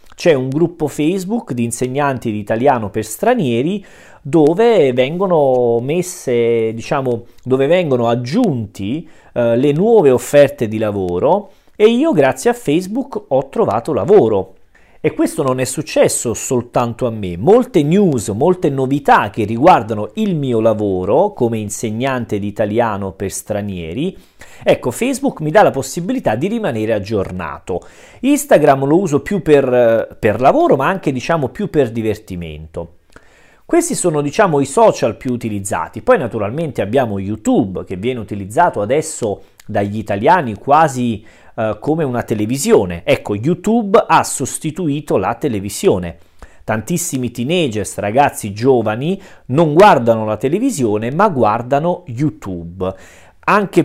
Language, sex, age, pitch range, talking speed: Russian, male, 40-59, 115-175 Hz, 125 wpm